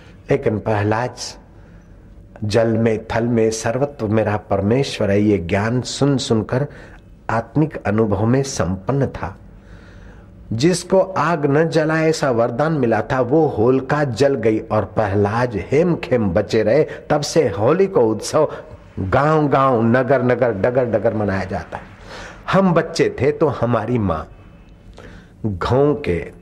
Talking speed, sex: 120 wpm, male